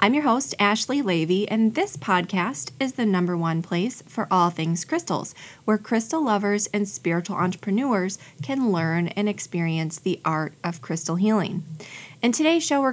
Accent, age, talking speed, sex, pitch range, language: American, 20-39, 165 wpm, female, 175-235 Hz, English